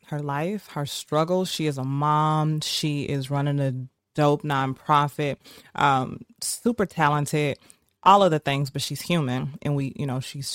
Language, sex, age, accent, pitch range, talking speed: English, female, 20-39, American, 135-165 Hz, 165 wpm